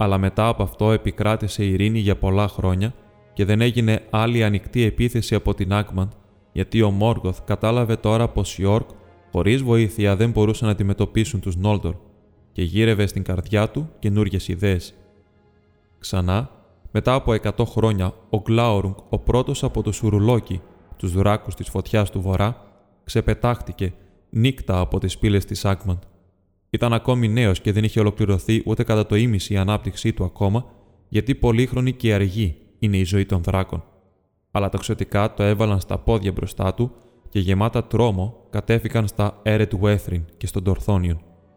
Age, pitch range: 20-39, 95-110 Hz